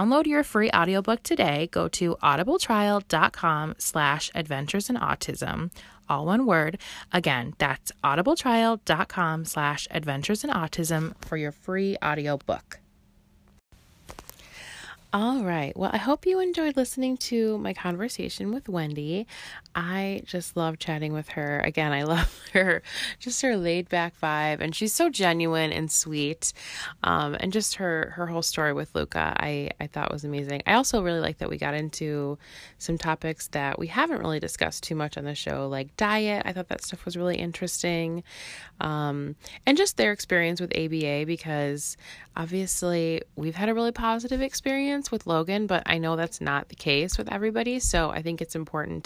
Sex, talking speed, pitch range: female, 165 wpm, 155-215 Hz